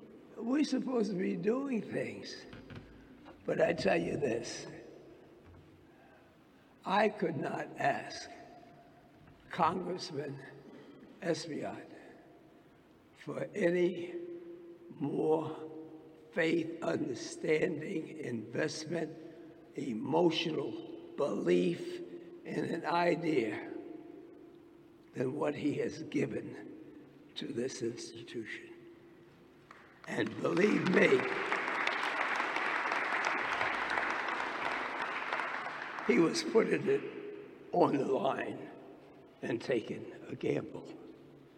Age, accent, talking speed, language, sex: 60-79, American, 70 wpm, English, male